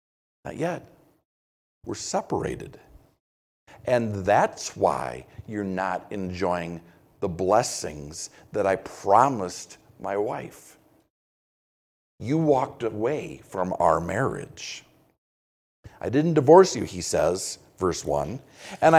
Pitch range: 110-185 Hz